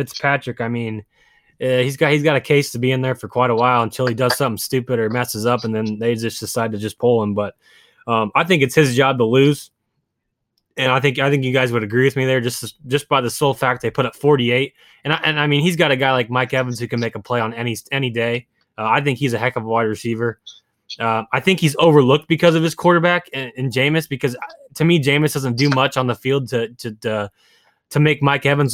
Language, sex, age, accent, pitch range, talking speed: English, male, 20-39, American, 120-145 Hz, 265 wpm